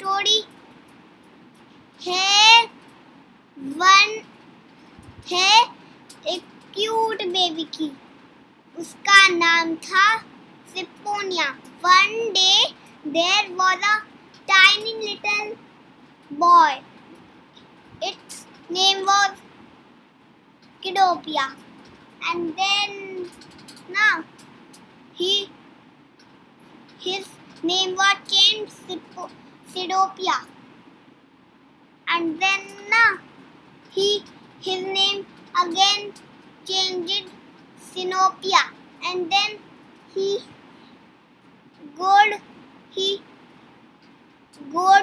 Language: Hindi